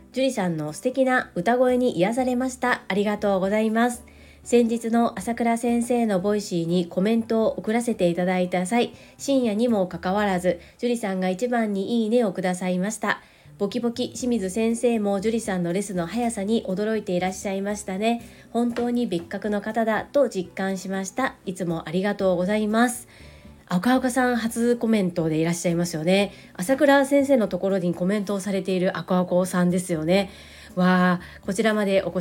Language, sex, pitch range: Japanese, female, 180-235 Hz